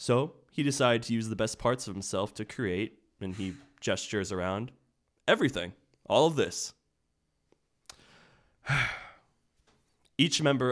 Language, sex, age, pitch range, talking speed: English, male, 20-39, 105-125 Hz, 125 wpm